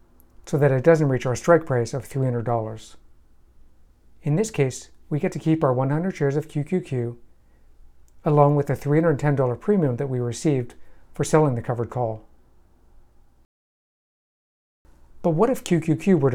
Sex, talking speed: male, 145 wpm